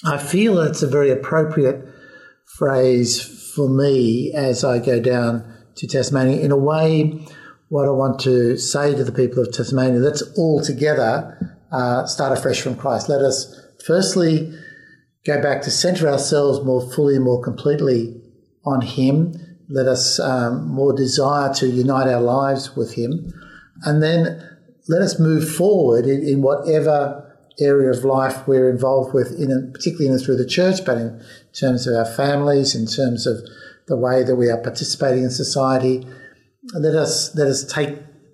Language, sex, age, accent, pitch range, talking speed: English, male, 50-69, Australian, 125-150 Hz, 165 wpm